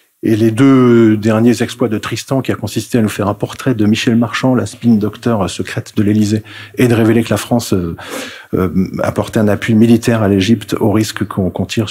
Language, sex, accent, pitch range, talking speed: French, male, French, 105-125 Hz, 195 wpm